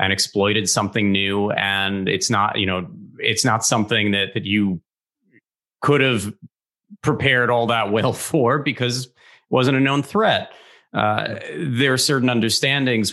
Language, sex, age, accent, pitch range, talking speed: English, male, 30-49, American, 105-130 Hz, 150 wpm